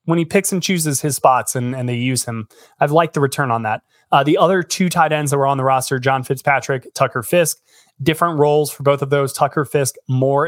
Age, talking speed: 20-39, 240 wpm